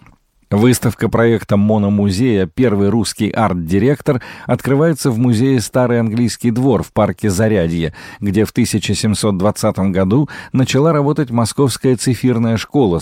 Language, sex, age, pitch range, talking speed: Russian, male, 40-59, 100-130 Hz, 110 wpm